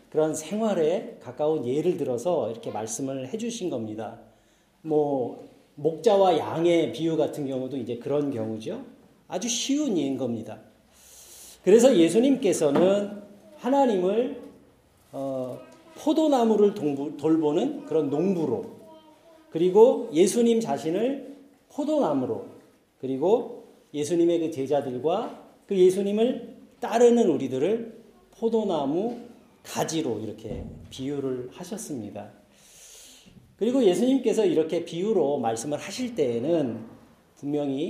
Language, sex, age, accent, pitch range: Korean, male, 40-59, native, 145-240 Hz